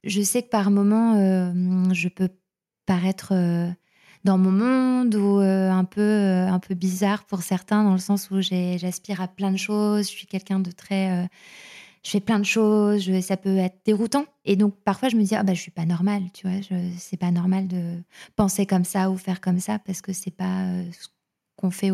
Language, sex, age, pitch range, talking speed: French, female, 20-39, 185-210 Hz, 225 wpm